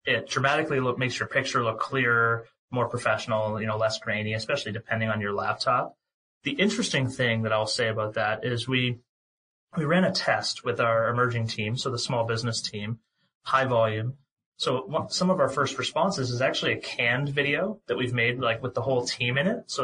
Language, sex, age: English, male, 30-49